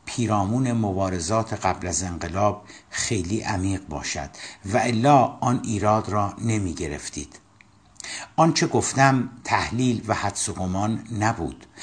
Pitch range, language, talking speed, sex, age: 95-115 Hz, Persian, 115 wpm, male, 60-79